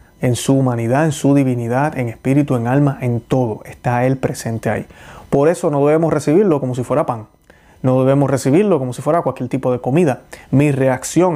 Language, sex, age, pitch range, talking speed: Spanish, male, 30-49, 130-155 Hz, 195 wpm